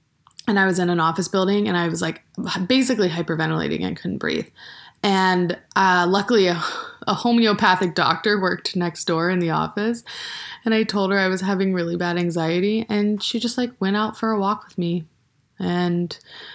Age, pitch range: 20-39, 180-230 Hz